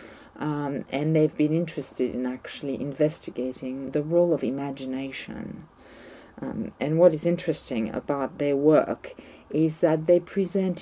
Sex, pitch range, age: female, 135-165 Hz, 50-69